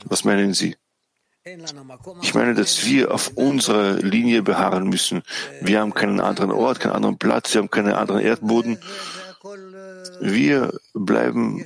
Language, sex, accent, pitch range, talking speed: German, male, German, 105-135 Hz, 140 wpm